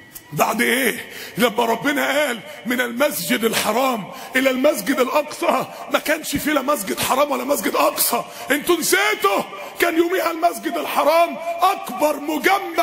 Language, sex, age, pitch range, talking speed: Arabic, male, 30-49, 265-335 Hz, 130 wpm